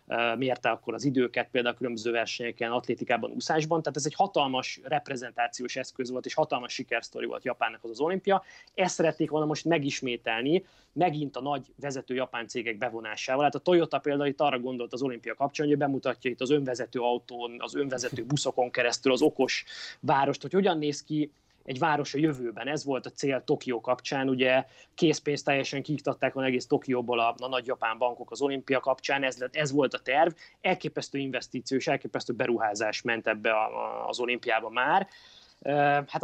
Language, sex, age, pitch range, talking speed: Hungarian, male, 20-39, 120-145 Hz, 175 wpm